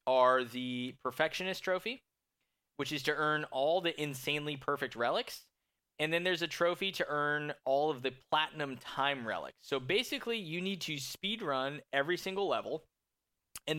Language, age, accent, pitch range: English, 10-29, American, 125-160 Hz